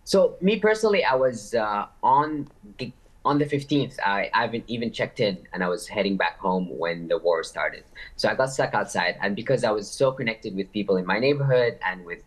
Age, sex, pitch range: 20-39, male, 95-125 Hz